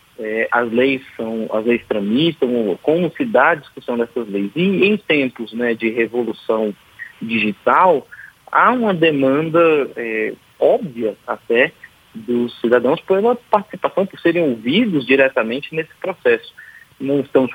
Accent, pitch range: Brazilian, 115-160 Hz